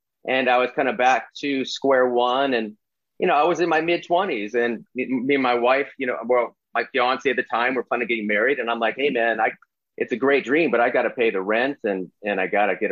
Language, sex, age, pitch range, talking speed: English, male, 30-49, 120-145 Hz, 265 wpm